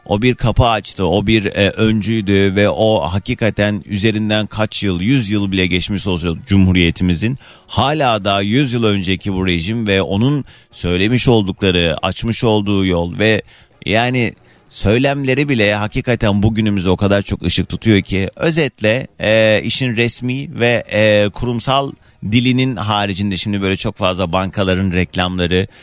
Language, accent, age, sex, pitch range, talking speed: Turkish, native, 40-59, male, 95-115 Hz, 140 wpm